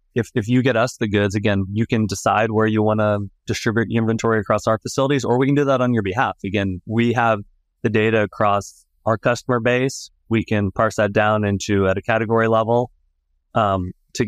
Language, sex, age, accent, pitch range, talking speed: English, male, 20-39, American, 100-120 Hz, 205 wpm